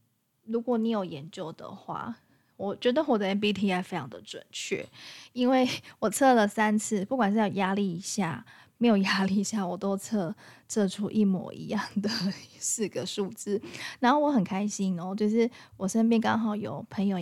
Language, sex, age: Chinese, female, 10-29